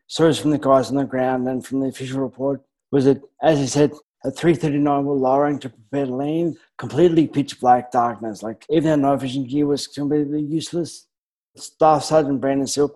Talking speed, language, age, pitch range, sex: 195 wpm, English, 20-39, 130-150 Hz, male